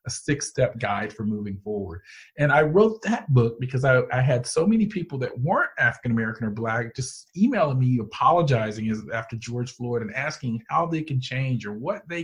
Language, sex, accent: English, male, American